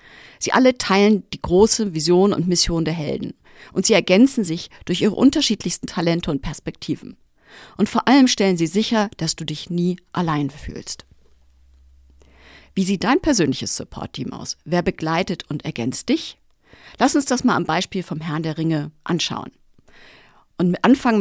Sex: female